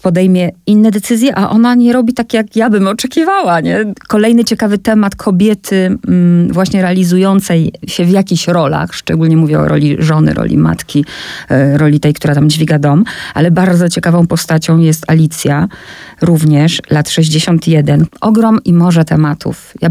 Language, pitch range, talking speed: Polish, 150-195 Hz, 150 wpm